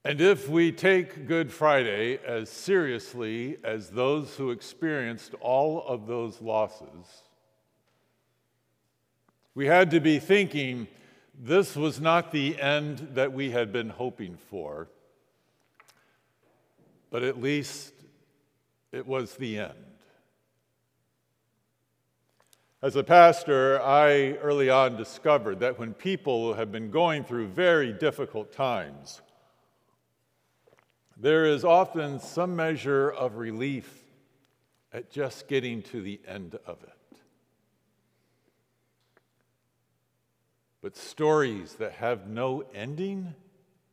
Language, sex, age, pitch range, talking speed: English, male, 50-69, 120-160 Hz, 105 wpm